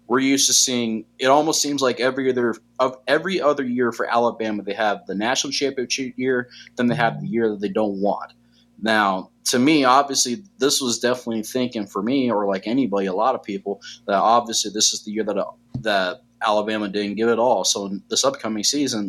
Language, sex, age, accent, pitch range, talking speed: English, male, 20-39, American, 105-125 Hz, 210 wpm